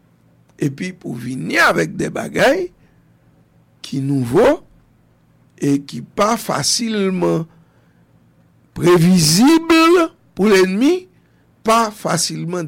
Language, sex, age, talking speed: English, male, 60-79, 85 wpm